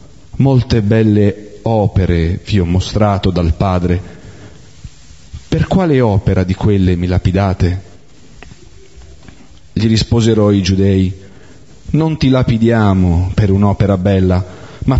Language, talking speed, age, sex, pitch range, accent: Italian, 105 wpm, 40-59, male, 95-120 Hz, native